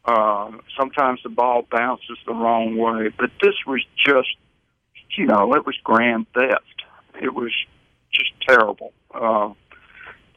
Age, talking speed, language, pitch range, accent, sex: 60-79, 135 wpm, English, 115-130 Hz, American, male